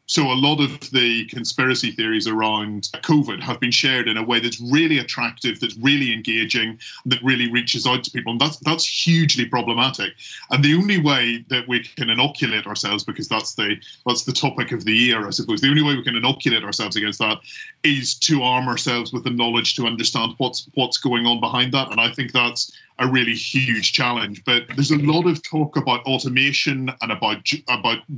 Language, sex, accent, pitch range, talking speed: English, male, British, 120-140 Hz, 200 wpm